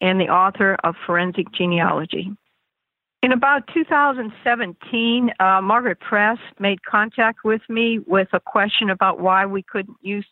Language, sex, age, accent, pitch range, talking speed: English, female, 60-79, American, 185-220 Hz, 140 wpm